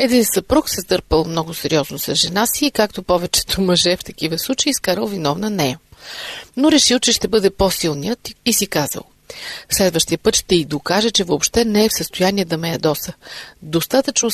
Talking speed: 180 wpm